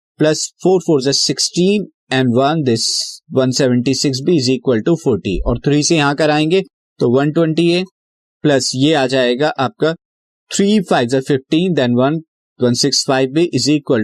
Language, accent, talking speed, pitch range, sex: Hindi, native, 160 wpm, 125-155 Hz, male